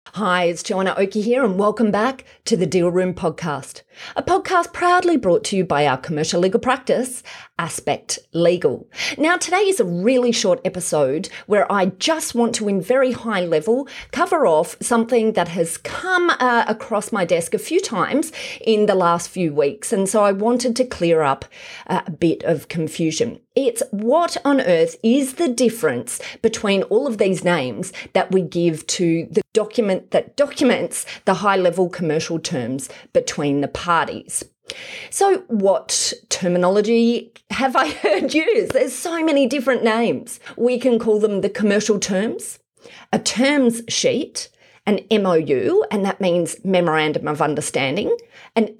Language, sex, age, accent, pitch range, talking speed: English, female, 30-49, Australian, 180-265 Hz, 160 wpm